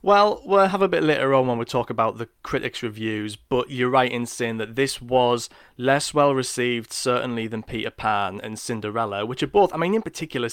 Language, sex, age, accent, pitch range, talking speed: English, male, 20-39, British, 110-135 Hz, 210 wpm